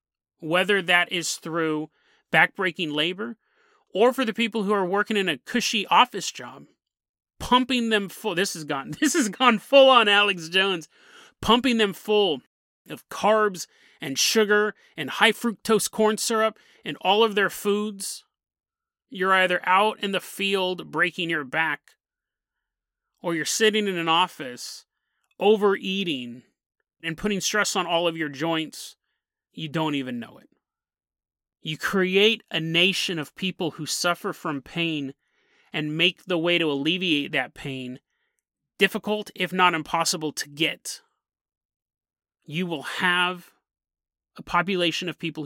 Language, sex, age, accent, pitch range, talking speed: English, male, 30-49, American, 160-215 Hz, 140 wpm